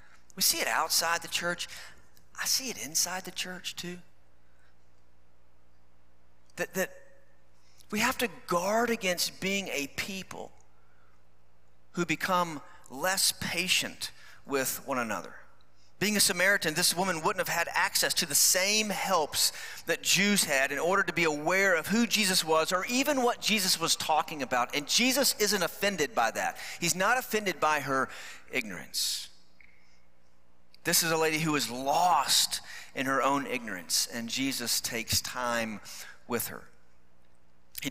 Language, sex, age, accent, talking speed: English, male, 40-59, American, 145 wpm